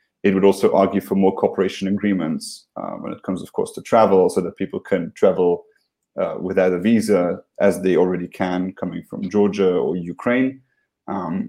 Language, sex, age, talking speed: Turkish, male, 30-49, 185 wpm